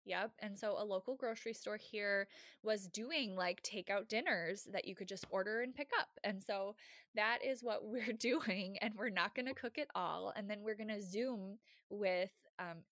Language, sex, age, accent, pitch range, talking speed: English, female, 20-39, American, 195-255 Hz, 205 wpm